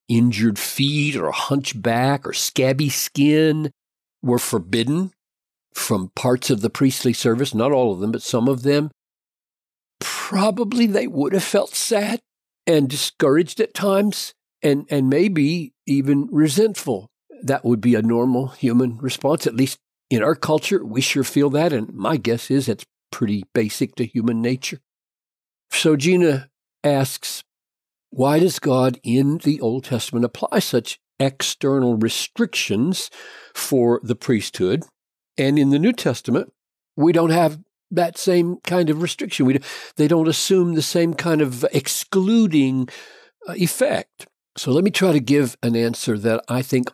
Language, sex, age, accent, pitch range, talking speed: English, male, 60-79, American, 120-160 Hz, 150 wpm